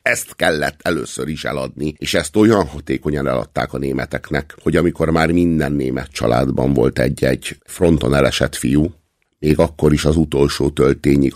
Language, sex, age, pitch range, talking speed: Hungarian, male, 50-69, 70-80 Hz, 155 wpm